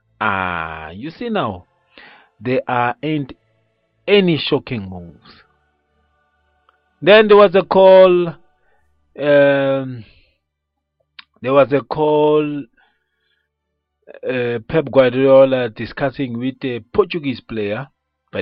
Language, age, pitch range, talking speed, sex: English, 40-59, 95-145 Hz, 95 wpm, male